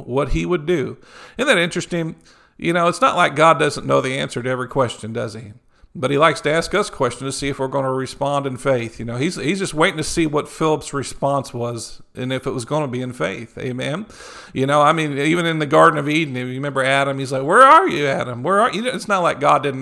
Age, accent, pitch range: 50-69, American, 130-165 Hz